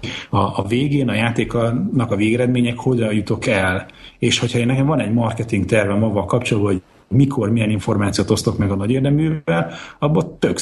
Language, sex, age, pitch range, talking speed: Hungarian, male, 30-49, 105-125 Hz, 170 wpm